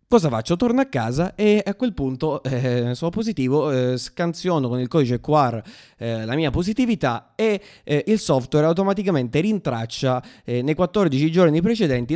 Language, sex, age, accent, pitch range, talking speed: Italian, male, 20-39, native, 125-170 Hz, 165 wpm